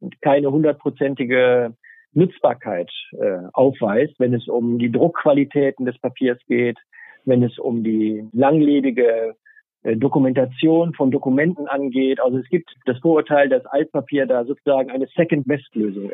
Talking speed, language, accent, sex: 125 wpm, German, German, male